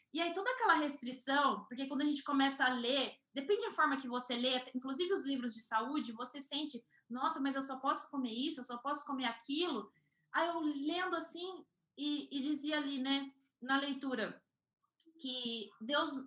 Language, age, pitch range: Portuguese, 20-39, 255-325 Hz